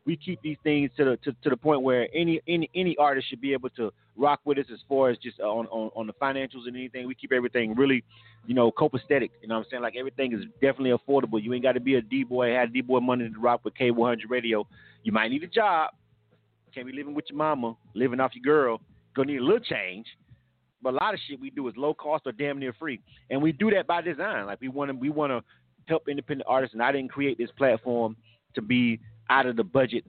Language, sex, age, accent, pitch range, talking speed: English, male, 30-49, American, 120-150 Hz, 255 wpm